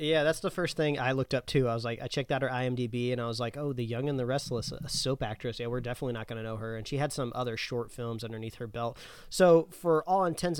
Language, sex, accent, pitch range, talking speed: English, male, American, 120-155 Hz, 295 wpm